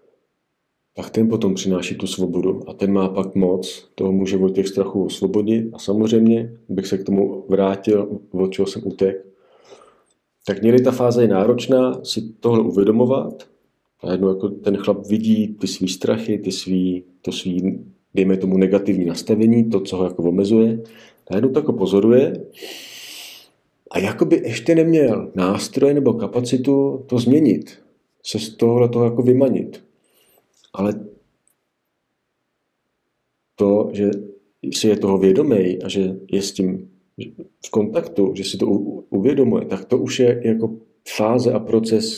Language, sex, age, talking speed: Czech, male, 40-59, 150 wpm